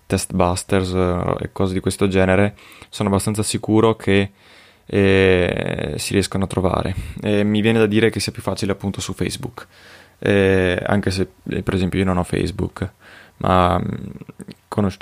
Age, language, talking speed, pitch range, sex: 20-39, Italian, 155 wpm, 95-110 Hz, male